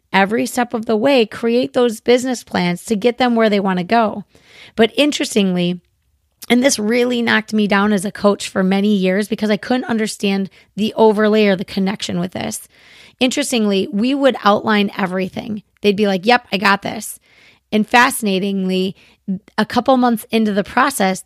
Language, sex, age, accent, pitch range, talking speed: English, female, 30-49, American, 195-240 Hz, 175 wpm